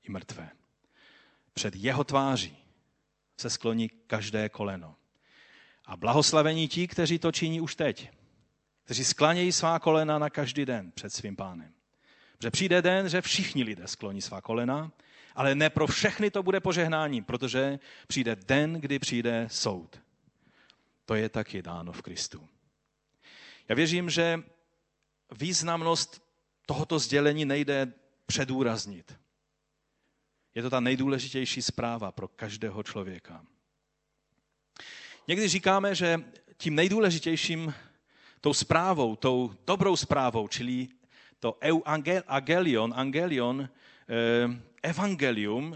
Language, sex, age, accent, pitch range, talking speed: Czech, male, 40-59, native, 120-165 Hz, 110 wpm